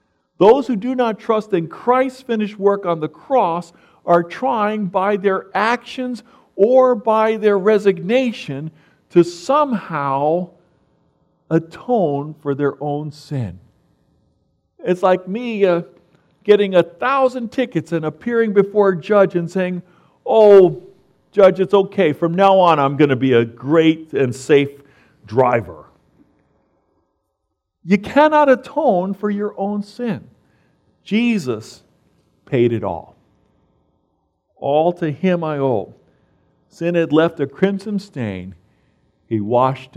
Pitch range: 140-205 Hz